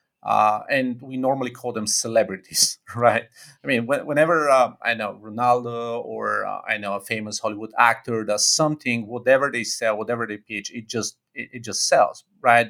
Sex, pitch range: male, 110-135 Hz